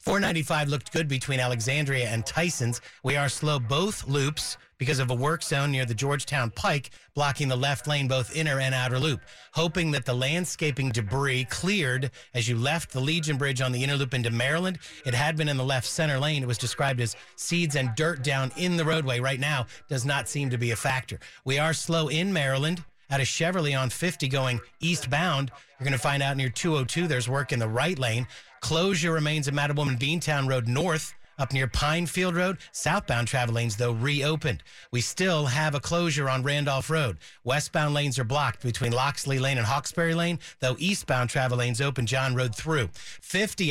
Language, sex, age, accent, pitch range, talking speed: English, male, 40-59, American, 130-160 Hz, 200 wpm